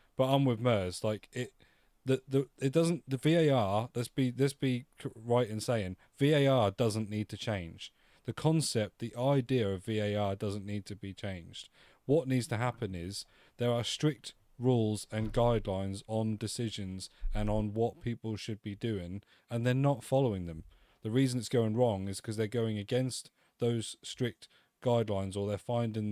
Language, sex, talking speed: English, male, 175 wpm